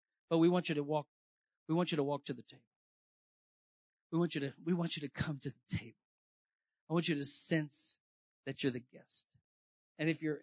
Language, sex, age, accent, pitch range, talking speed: English, male, 50-69, American, 150-180 Hz, 220 wpm